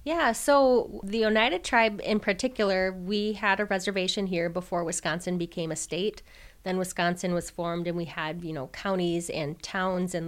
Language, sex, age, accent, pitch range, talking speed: English, female, 30-49, American, 170-200 Hz, 175 wpm